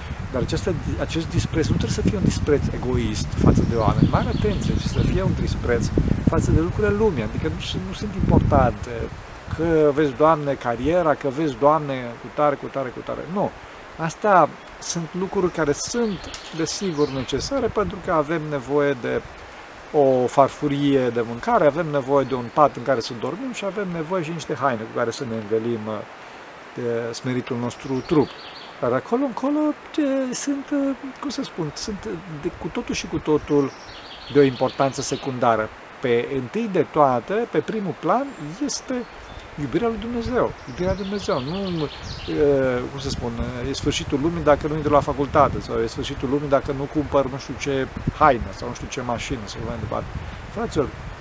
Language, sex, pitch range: Romanian, male, 130-175 Hz